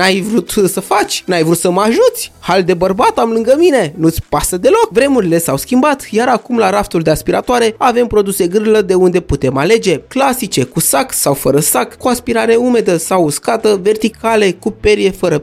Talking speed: 190 wpm